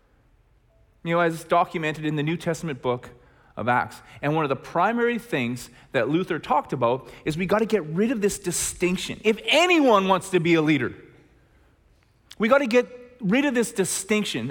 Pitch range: 120-195 Hz